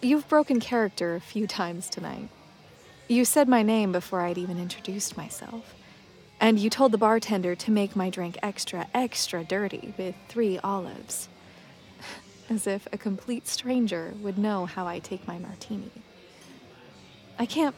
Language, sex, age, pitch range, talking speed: English, female, 20-39, 180-225 Hz, 150 wpm